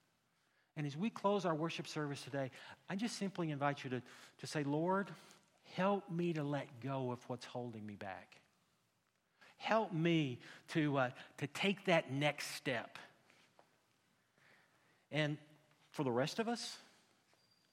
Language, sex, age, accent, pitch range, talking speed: English, male, 50-69, American, 135-180 Hz, 140 wpm